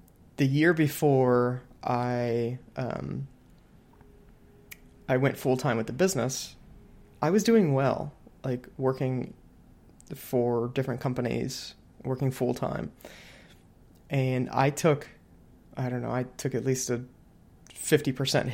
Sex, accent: male, American